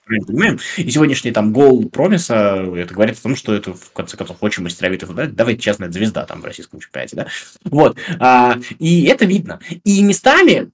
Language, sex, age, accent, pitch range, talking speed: Russian, male, 20-39, native, 130-195 Hz, 175 wpm